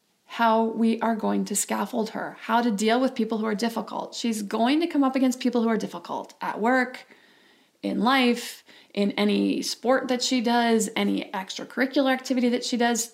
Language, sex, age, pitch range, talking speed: English, female, 30-49, 215-250 Hz, 185 wpm